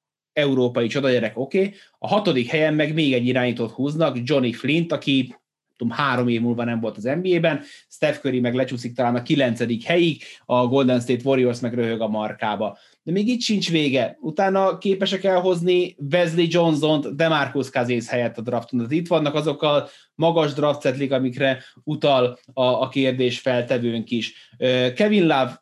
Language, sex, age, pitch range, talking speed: Hungarian, male, 30-49, 120-155 Hz, 155 wpm